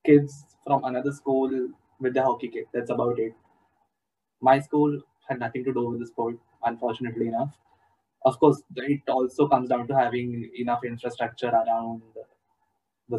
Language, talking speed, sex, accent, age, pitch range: English, 155 wpm, male, Indian, 10-29, 125-145 Hz